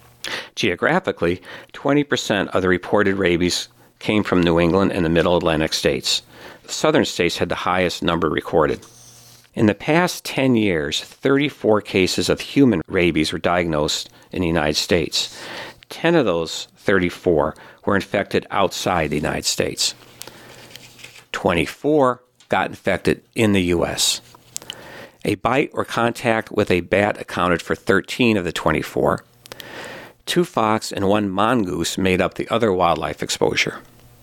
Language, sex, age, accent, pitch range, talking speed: English, male, 50-69, American, 85-120 Hz, 140 wpm